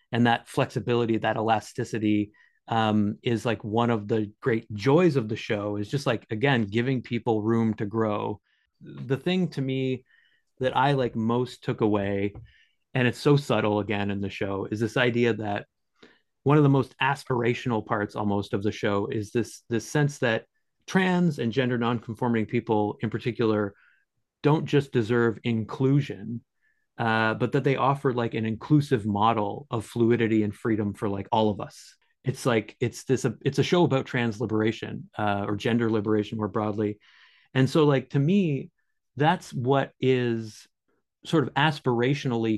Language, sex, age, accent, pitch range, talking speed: English, male, 30-49, American, 110-135 Hz, 165 wpm